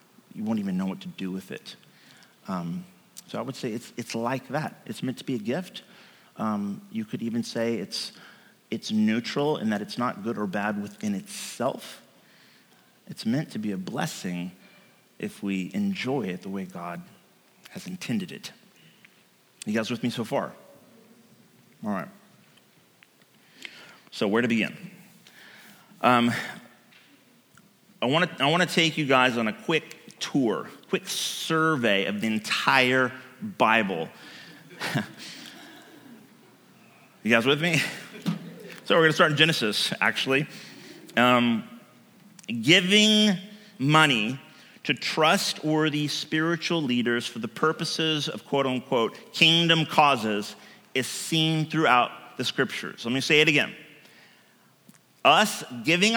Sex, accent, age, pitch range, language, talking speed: male, American, 30-49, 120-200 Hz, English, 135 wpm